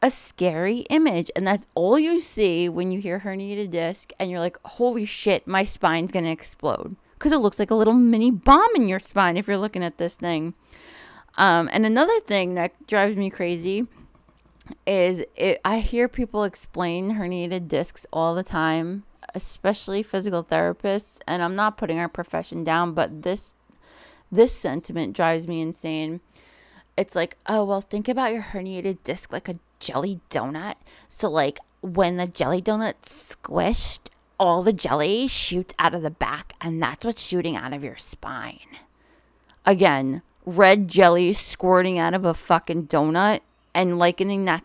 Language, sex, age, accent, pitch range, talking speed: English, female, 20-39, American, 170-210 Hz, 165 wpm